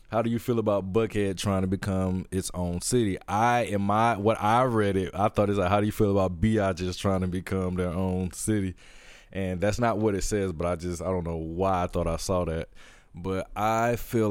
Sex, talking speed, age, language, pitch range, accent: male, 240 wpm, 20-39, English, 95-120 Hz, American